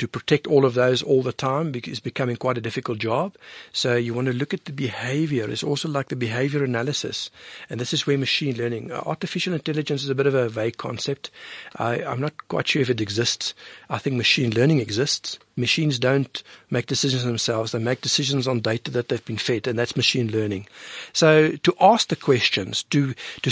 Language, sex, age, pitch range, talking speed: English, male, 60-79, 125-155 Hz, 205 wpm